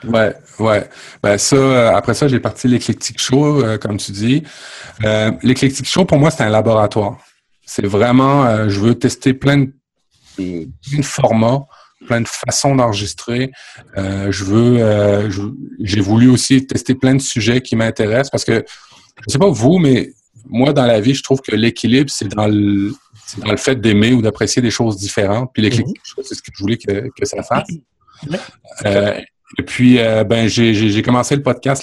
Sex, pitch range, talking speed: male, 105-130 Hz, 190 wpm